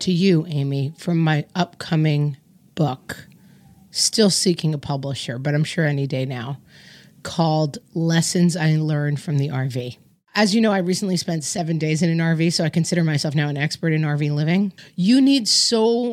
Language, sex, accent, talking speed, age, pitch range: English, female, American, 180 wpm, 30-49, 155-200 Hz